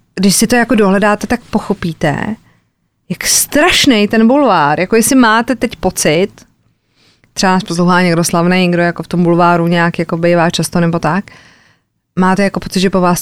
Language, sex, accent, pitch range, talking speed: Czech, female, native, 175-215 Hz, 175 wpm